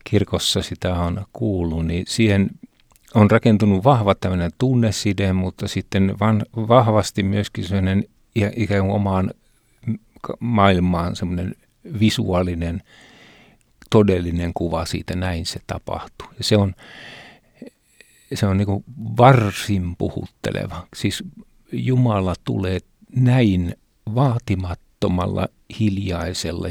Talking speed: 95 wpm